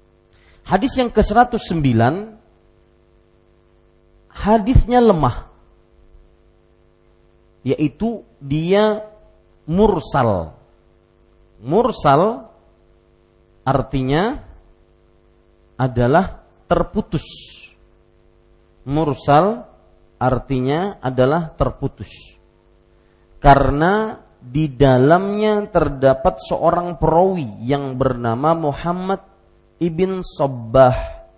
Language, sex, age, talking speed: Malay, male, 40-59, 55 wpm